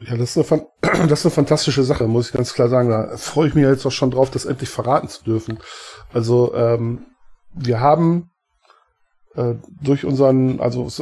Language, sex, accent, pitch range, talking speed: German, male, German, 120-150 Hz, 190 wpm